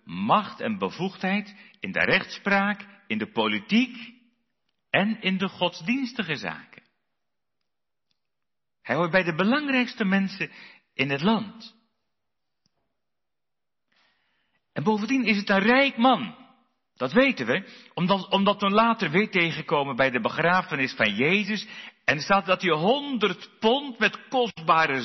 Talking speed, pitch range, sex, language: 125 wpm, 170-230 Hz, male, Dutch